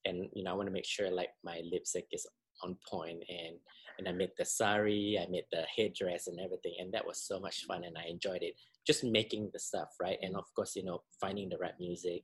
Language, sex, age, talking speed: English, male, 20-39, 245 wpm